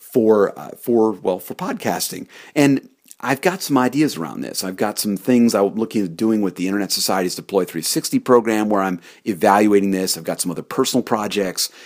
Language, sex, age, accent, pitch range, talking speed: English, male, 40-59, American, 90-130 Hz, 190 wpm